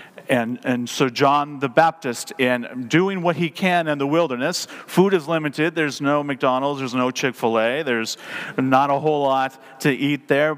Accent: American